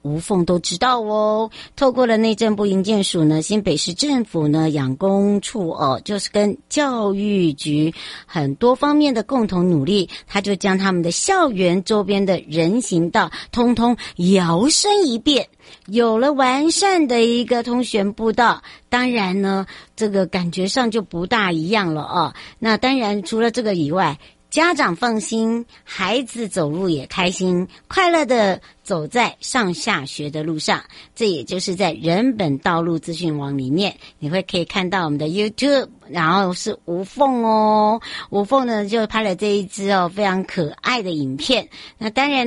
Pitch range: 175-240 Hz